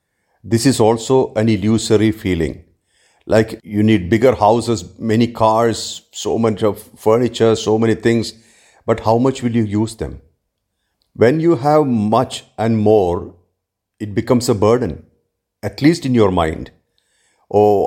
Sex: male